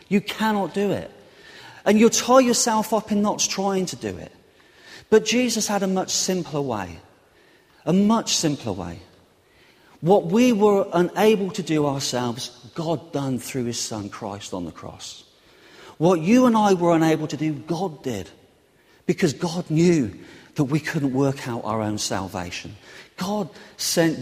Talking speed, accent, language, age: 160 wpm, British, English, 40-59